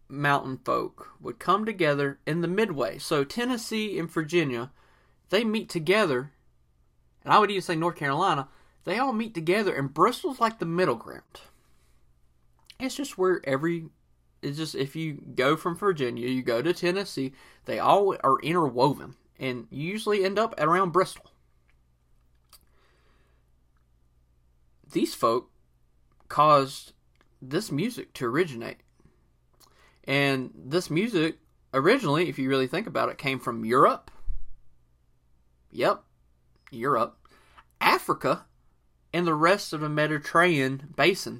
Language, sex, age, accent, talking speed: English, male, 30-49, American, 130 wpm